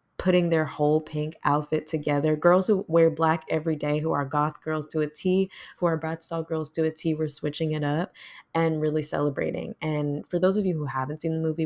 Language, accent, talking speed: English, American, 225 wpm